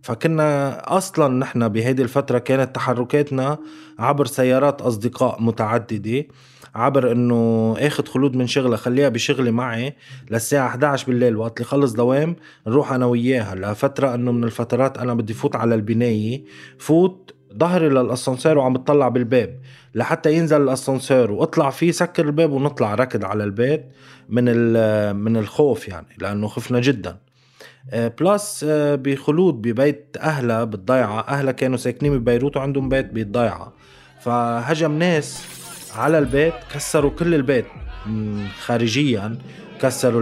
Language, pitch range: Arabic, 115-145 Hz